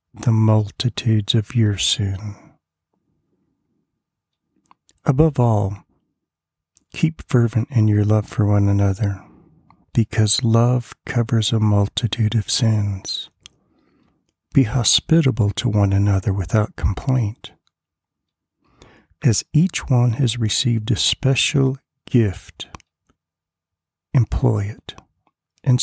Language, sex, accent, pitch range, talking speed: English, male, American, 100-125 Hz, 95 wpm